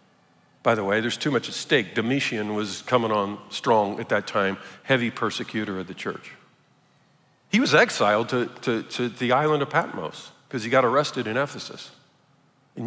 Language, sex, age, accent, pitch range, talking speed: English, male, 50-69, American, 110-145 Hz, 175 wpm